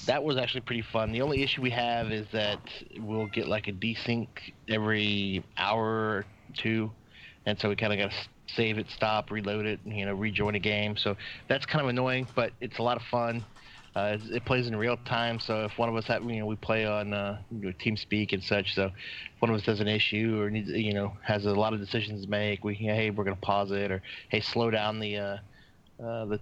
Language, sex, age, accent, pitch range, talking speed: English, male, 30-49, American, 100-115 Hz, 245 wpm